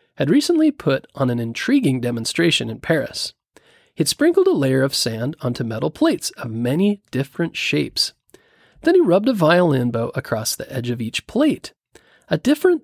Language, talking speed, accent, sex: English, 170 wpm, American, male